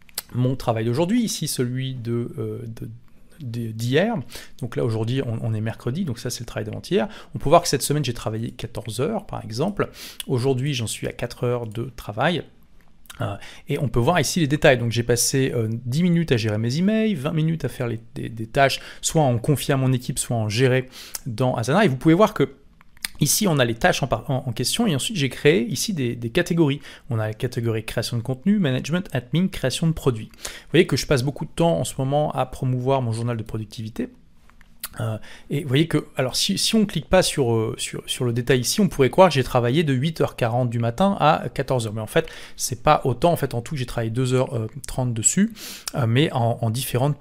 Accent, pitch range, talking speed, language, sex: French, 120-150 Hz, 225 wpm, French, male